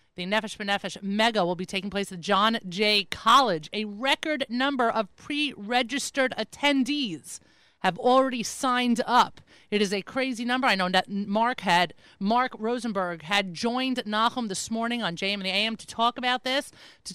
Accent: American